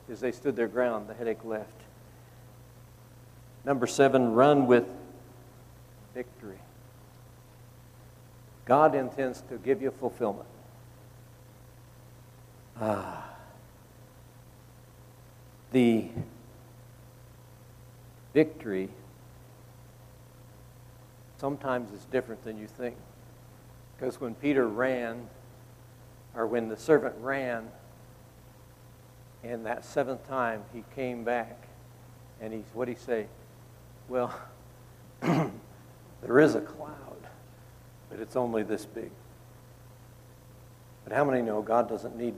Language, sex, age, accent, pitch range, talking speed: English, male, 60-79, American, 120-125 Hz, 95 wpm